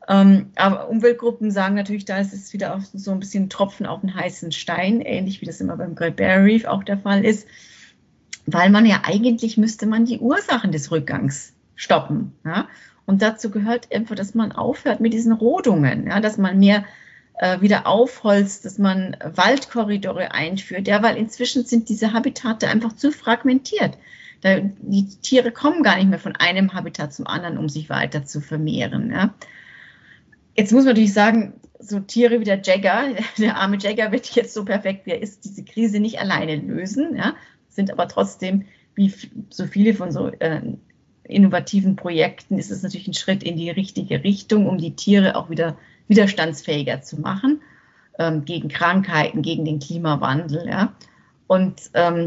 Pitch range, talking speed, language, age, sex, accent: 175-220 Hz, 175 wpm, German, 40-59, female, German